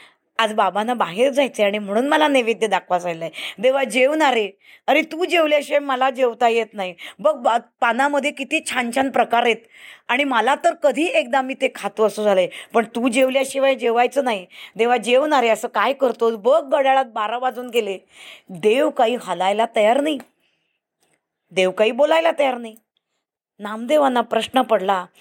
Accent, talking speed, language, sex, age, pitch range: native, 150 wpm, Marathi, female, 20-39, 215-290 Hz